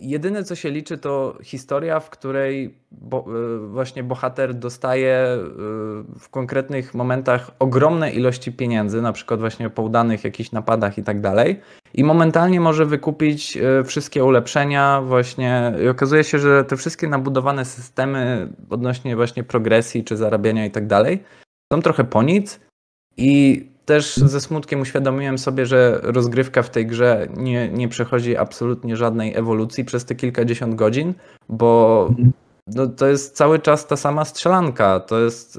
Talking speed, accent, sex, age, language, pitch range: 145 wpm, native, male, 20-39, Polish, 115-140 Hz